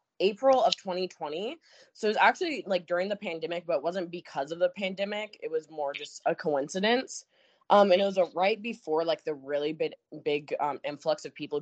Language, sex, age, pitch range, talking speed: English, female, 20-39, 165-220 Hz, 210 wpm